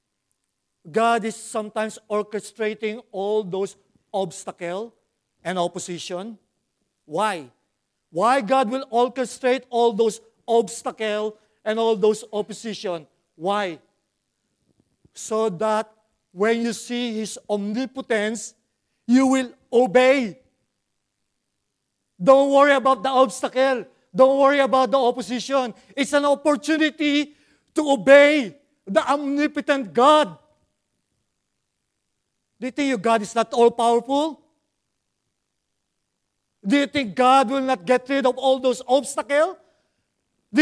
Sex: male